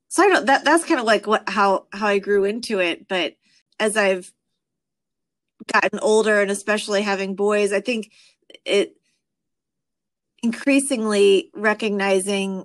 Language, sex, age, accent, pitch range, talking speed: English, female, 30-49, American, 190-210 Hz, 140 wpm